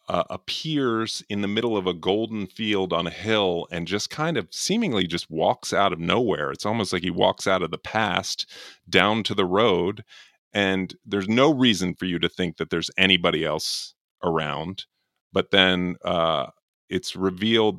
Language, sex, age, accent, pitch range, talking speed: English, male, 30-49, American, 90-110 Hz, 180 wpm